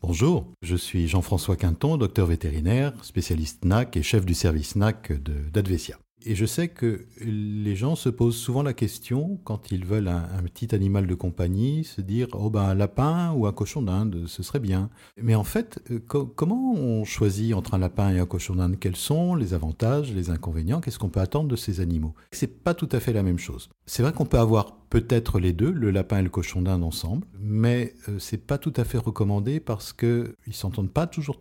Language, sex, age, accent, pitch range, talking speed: French, male, 50-69, French, 90-125 Hz, 220 wpm